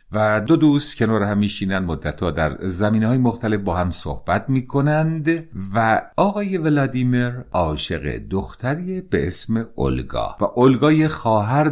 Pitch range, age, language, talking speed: 90-125 Hz, 50-69, Persian, 130 wpm